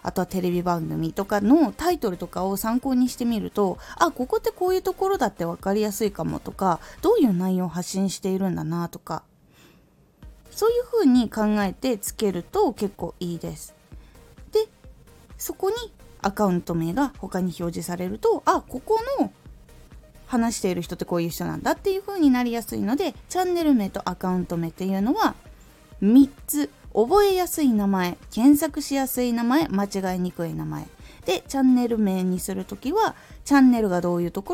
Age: 20-39